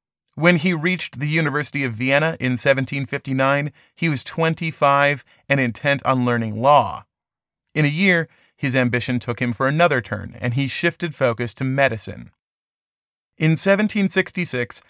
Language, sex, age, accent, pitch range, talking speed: English, male, 30-49, American, 120-150 Hz, 140 wpm